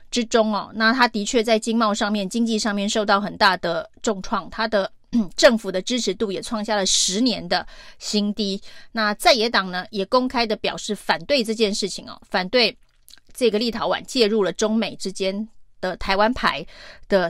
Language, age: Chinese, 30-49